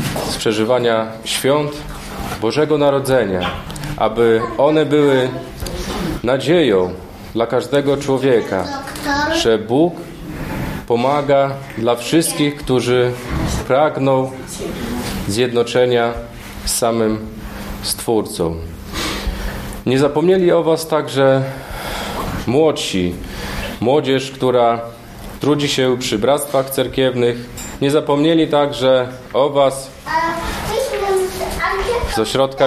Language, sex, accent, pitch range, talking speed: Polish, male, native, 115-145 Hz, 80 wpm